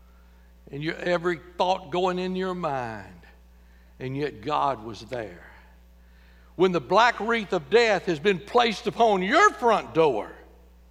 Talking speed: 140 wpm